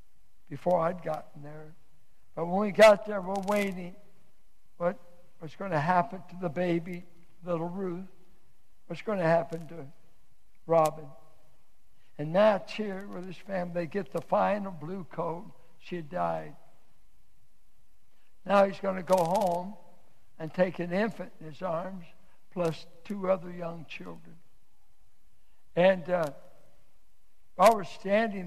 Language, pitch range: English, 160-190 Hz